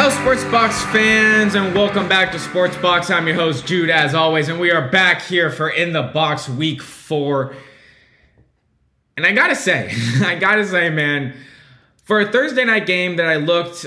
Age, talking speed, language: 20-39, 190 wpm, English